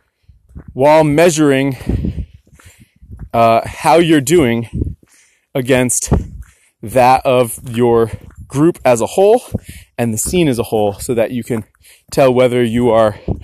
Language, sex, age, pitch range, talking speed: English, male, 20-39, 115-155 Hz, 125 wpm